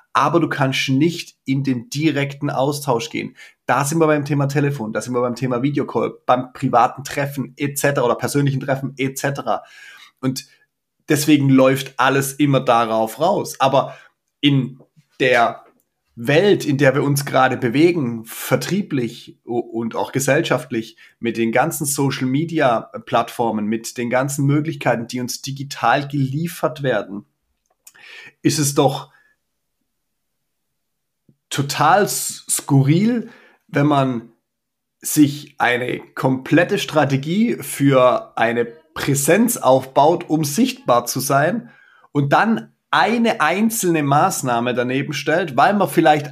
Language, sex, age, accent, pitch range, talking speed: German, male, 30-49, German, 125-155 Hz, 120 wpm